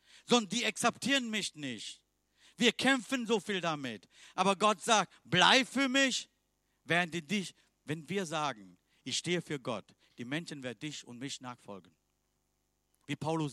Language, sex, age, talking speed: German, male, 50-69, 155 wpm